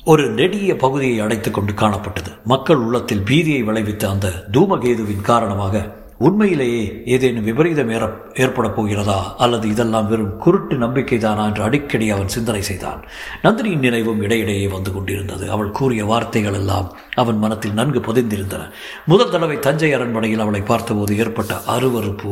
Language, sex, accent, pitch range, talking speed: Tamil, male, native, 105-135 Hz, 130 wpm